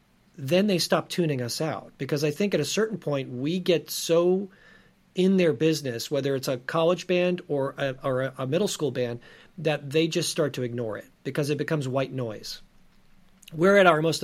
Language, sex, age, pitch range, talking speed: English, male, 40-59, 135-170 Hz, 195 wpm